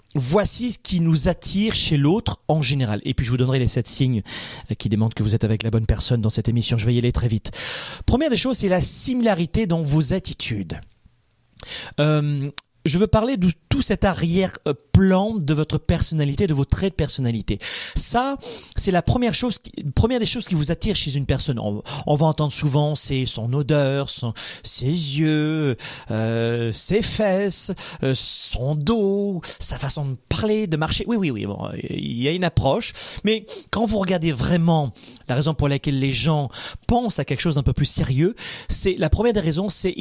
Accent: French